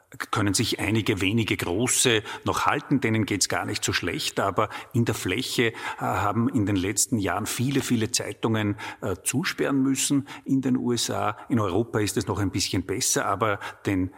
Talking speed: 175 wpm